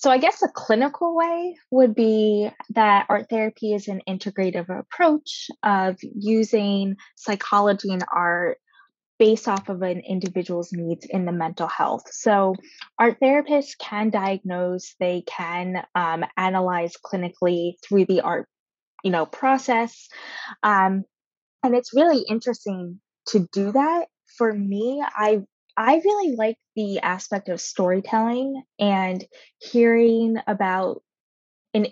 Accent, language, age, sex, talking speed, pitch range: American, English, 10-29, female, 130 wpm, 185-230 Hz